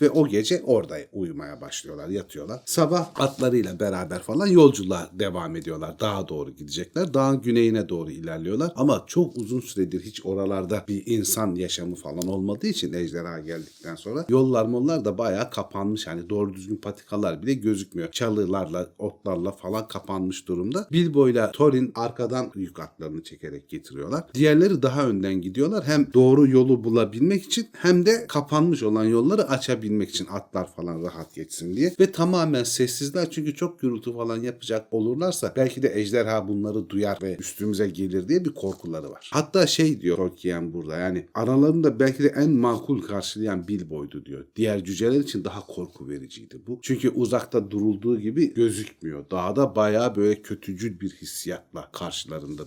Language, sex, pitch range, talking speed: Turkish, male, 95-135 Hz, 155 wpm